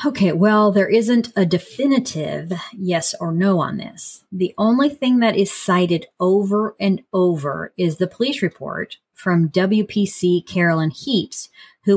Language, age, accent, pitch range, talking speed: English, 30-49, American, 175-225 Hz, 145 wpm